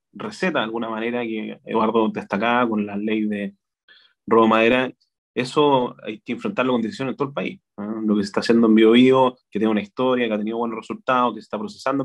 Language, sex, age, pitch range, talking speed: Spanish, male, 30-49, 110-130 Hz, 225 wpm